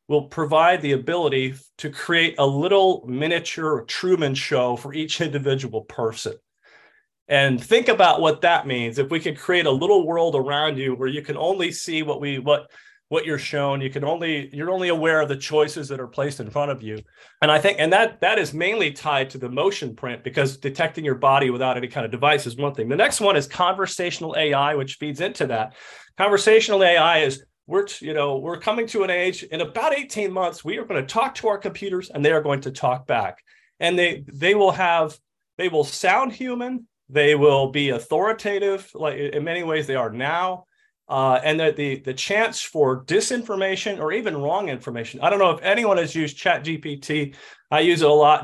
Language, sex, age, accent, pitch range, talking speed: English, male, 40-59, American, 140-185 Hz, 210 wpm